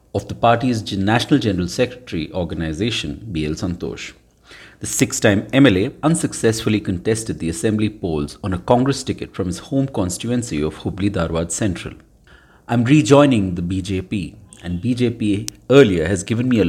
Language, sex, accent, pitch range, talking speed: English, male, Indian, 95-125 Hz, 150 wpm